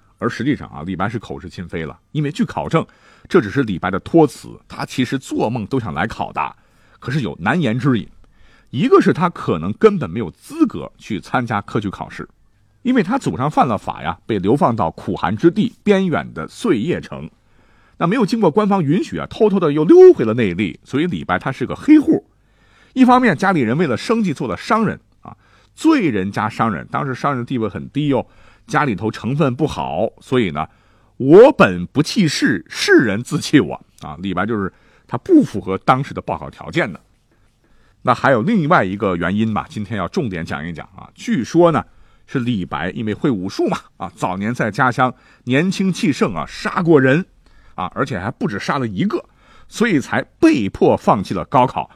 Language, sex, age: Chinese, male, 50-69